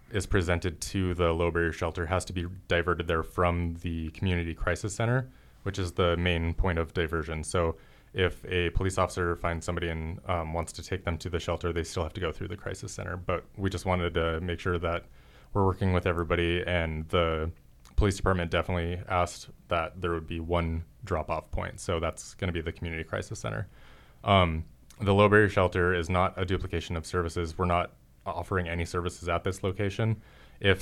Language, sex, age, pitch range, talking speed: English, male, 20-39, 85-95 Hz, 200 wpm